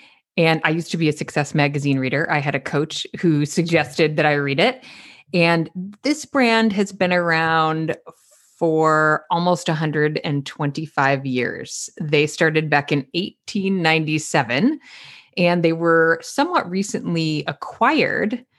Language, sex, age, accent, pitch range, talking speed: English, female, 30-49, American, 155-190 Hz, 130 wpm